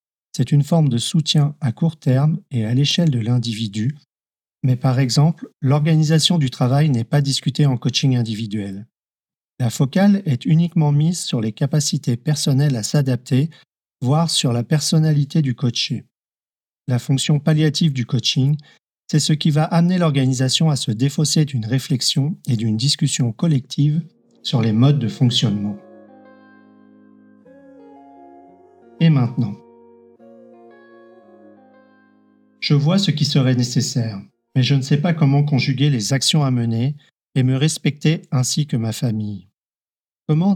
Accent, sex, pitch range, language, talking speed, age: French, male, 120-155 Hz, French, 140 wpm, 40-59